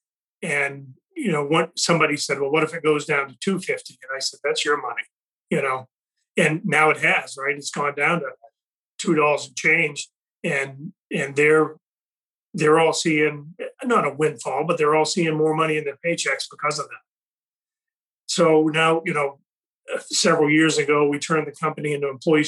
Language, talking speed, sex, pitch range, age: English, 185 wpm, male, 145-165 Hz, 40-59